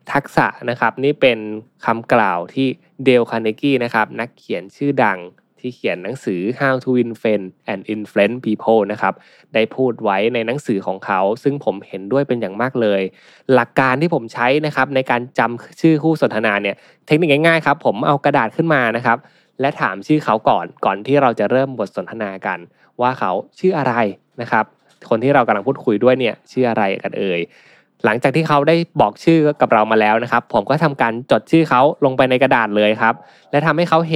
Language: Thai